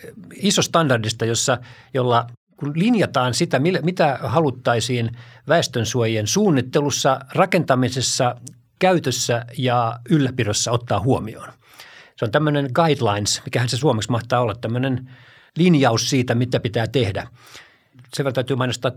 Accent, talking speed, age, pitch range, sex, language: native, 110 wpm, 50-69, 115-145 Hz, male, Finnish